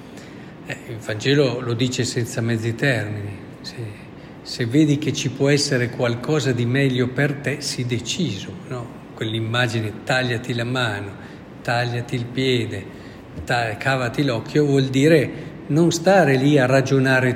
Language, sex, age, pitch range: Italian, male, 50-69, 120-150 Hz